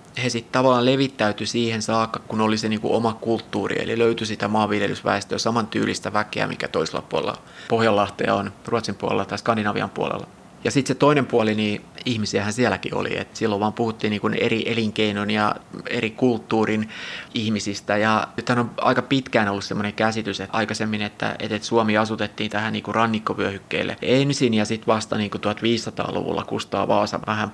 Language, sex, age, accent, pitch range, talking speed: Finnish, male, 30-49, native, 105-115 Hz, 160 wpm